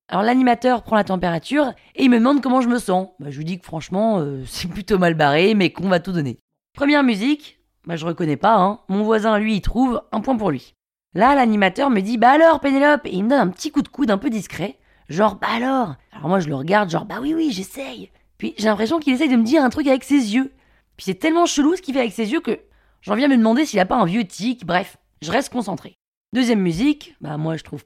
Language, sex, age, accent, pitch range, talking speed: French, female, 20-39, French, 180-265 Hz, 260 wpm